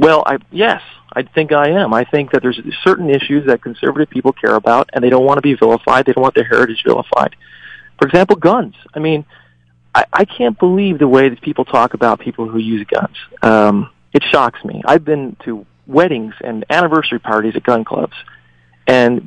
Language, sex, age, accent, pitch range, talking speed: English, male, 40-59, American, 115-150 Hz, 200 wpm